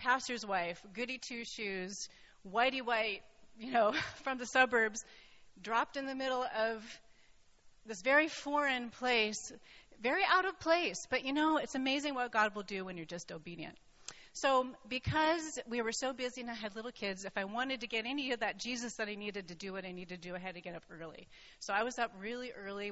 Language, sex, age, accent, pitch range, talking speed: English, female, 30-49, American, 195-265 Hz, 210 wpm